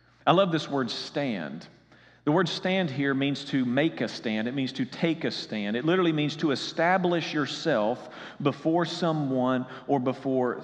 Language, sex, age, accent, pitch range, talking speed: English, male, 40-59, American, 120-155 Hz, 170 wpm